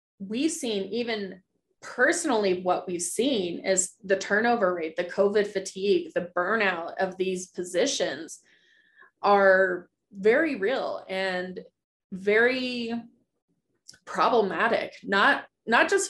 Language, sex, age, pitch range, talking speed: English, female, 20-39, 180-210 Hz, 105 wpm